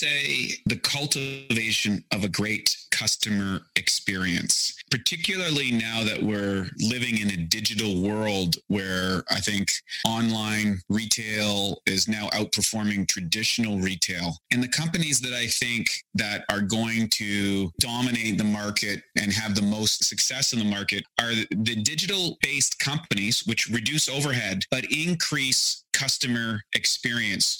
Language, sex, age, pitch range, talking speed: English, male, 30-49, 105-125 Hz, 130 wpm